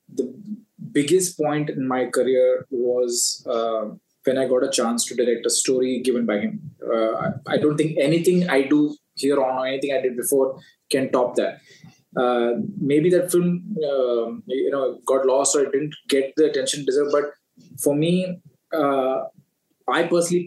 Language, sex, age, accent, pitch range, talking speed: English, male, 20-39, Indian, 125-175 Hz, 175 wpm